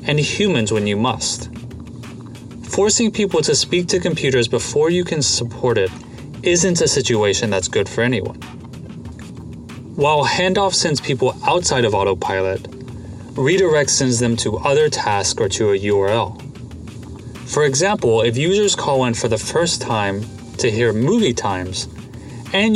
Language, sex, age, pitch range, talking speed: English, male, 30-49, 115-165 Hz, 145 wpm